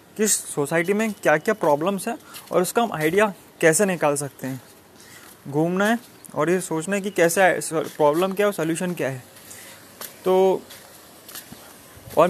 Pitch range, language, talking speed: 155-185 Hz, Hindi, 150 wpm